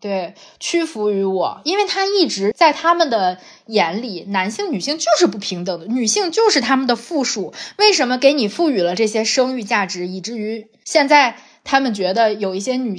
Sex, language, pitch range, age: female, Chinese, 195-285 Hz, 20-39